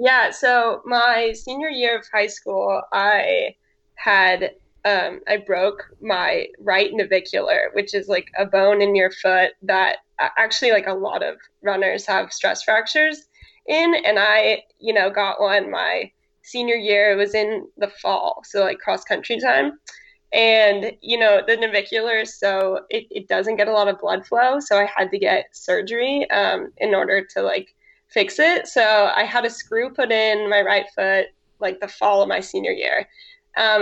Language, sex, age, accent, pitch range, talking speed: English, female, 10-29, American, 200-240 Hz, 175 wpm